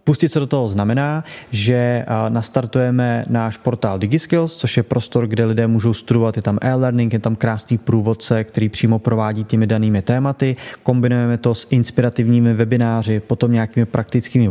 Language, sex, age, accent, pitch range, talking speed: Czech, male, 20-39, native, 115-125 Hz, 155 wpm